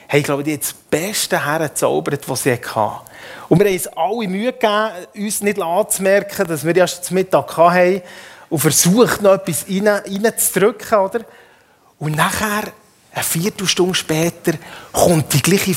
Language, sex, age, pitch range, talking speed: German, male, 30-49, 155-215 Hz, 160 wpm